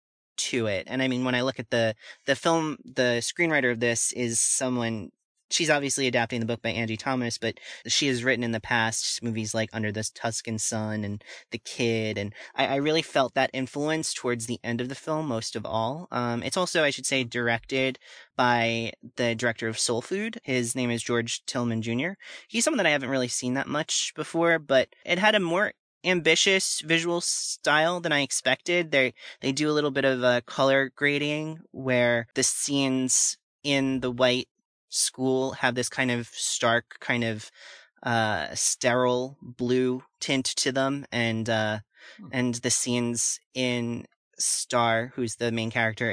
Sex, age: male, 30-49